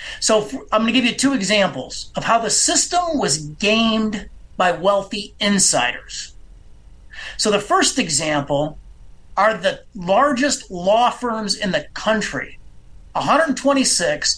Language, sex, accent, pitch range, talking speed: English, male, American, 205-270 Hz, 125 wpm